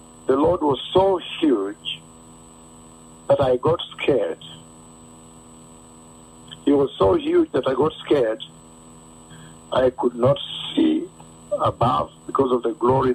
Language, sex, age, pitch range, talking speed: English, male, 60-79, 80-130 Hz, 120 wpm